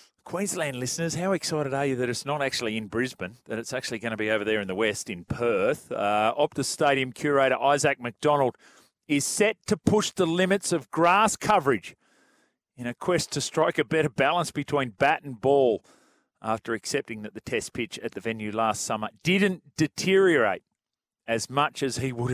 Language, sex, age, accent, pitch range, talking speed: English, male, 40-59, Australian, 115-160 Hz, 190 wpm